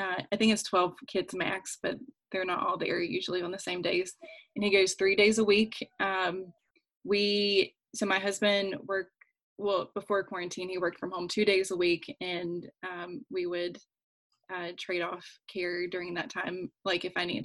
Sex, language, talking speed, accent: female, English, 195 wpm, American